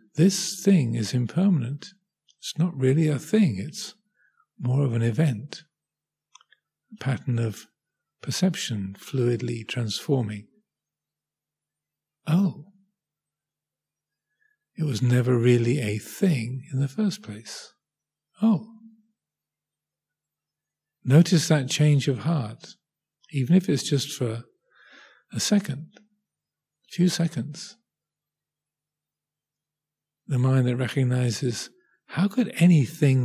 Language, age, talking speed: English, 50-69, 95 wpm